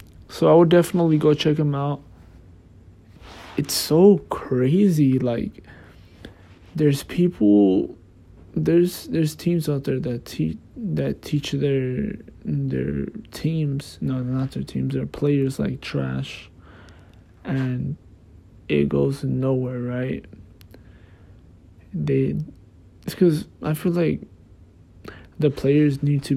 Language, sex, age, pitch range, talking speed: English, male, 20-39, 90-140 Hz, 110 wpm